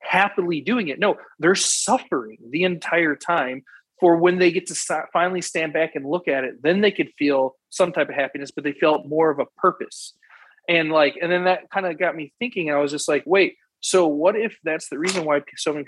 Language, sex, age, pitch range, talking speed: English, male, 30-49, 145-185 Hz, 225 wpm